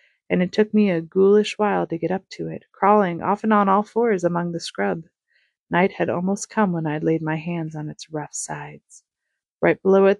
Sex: female